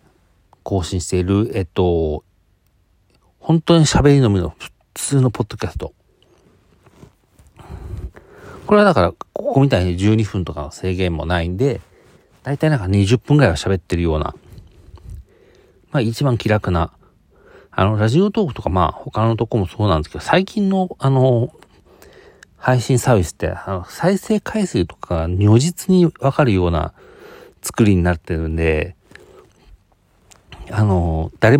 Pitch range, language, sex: 90-135 Hz, Japanese, male